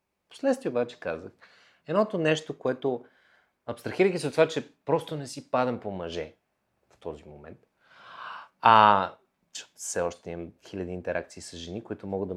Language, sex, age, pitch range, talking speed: Bulgarian, male, 30-49, 95-130 Hz, 160 wpm